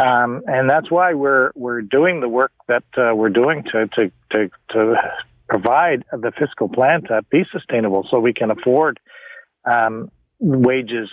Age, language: 50-69, English